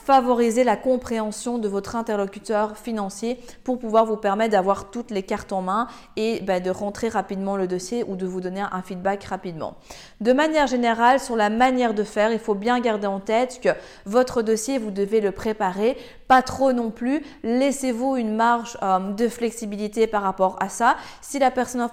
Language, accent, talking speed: French, French, 190 wpm